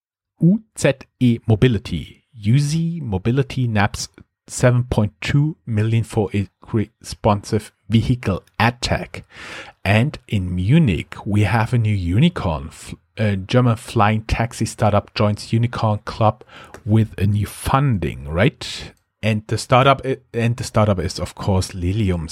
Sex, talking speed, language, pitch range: male, 115 wpm, English, 95-120 Hz